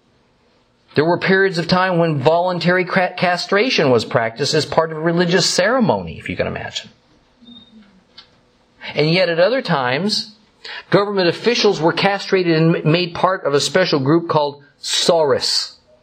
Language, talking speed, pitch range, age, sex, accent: English, 140 wpm, 135-190 Hz, 50-69, male, American